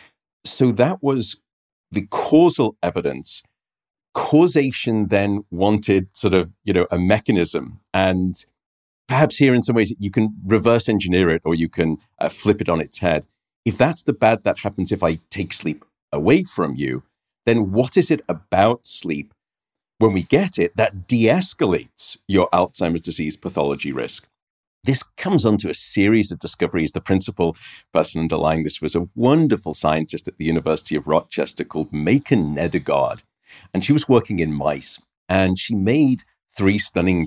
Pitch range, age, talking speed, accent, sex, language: 85-115 Hz, 40-59, 160 wpm, British, male, English